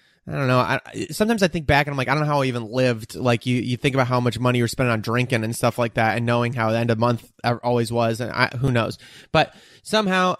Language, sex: English, male